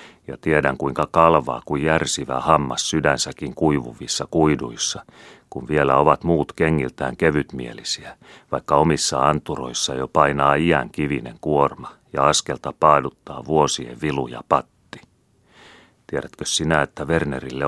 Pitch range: 65-80 Hz